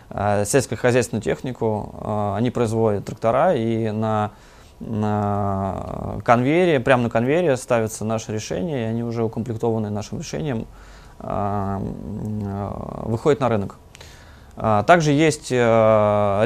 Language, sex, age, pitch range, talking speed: Russian, male, 20-39, 105-125 Hz, 95 wpm